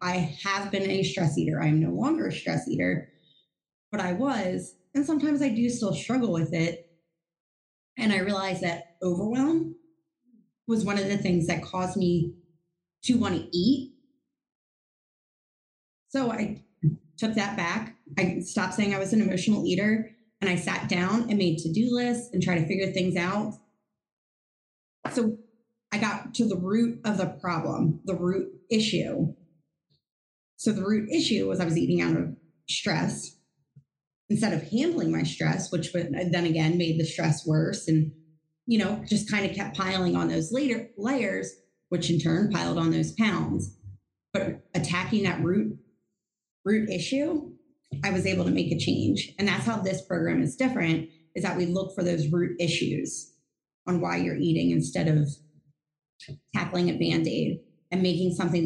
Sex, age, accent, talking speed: female, 20-39, American, 165 wpm